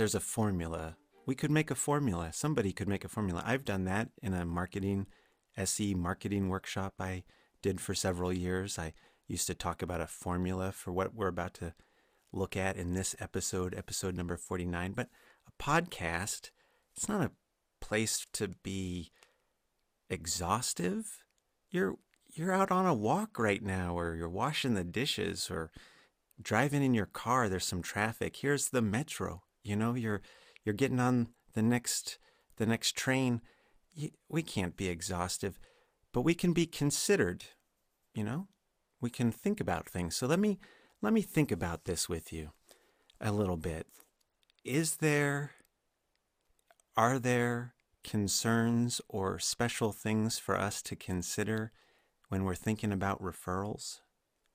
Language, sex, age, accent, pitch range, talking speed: English, male, 30-49, American, 90-120 Hz, 150 wpm